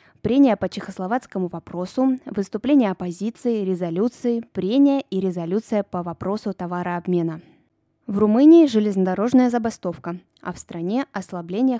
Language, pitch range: Russian, 180-235 Hz